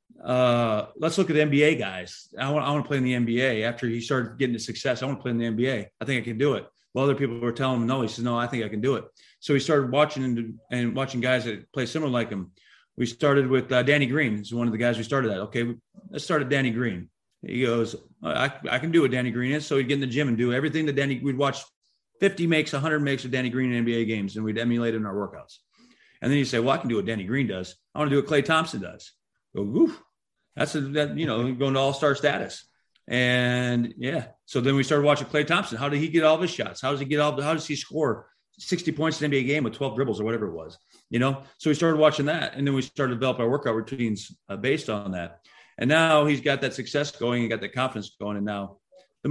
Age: 30-49